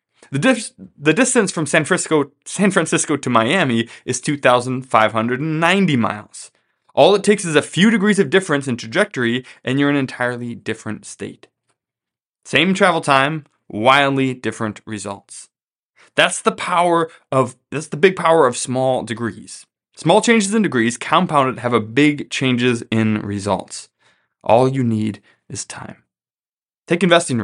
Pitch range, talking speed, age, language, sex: 115-165 Hz, 145 wpm, 20-39, English, male